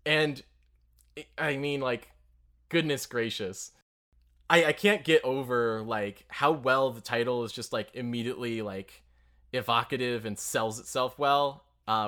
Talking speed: 135 wpm